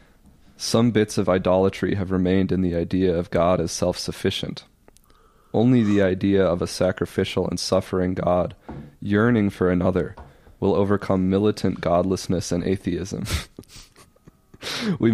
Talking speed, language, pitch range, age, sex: 125 wpm, English, 90-105 Hz, 30-49, male